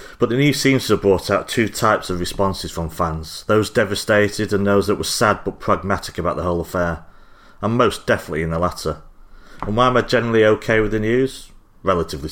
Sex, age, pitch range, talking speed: male, 30-49, 85-110 Hz, 210 wpm